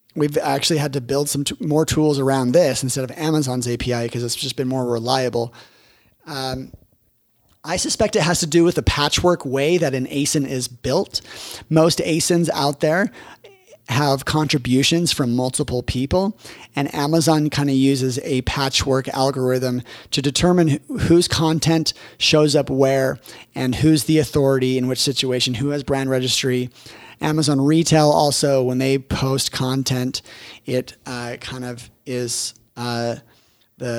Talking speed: 150 wpm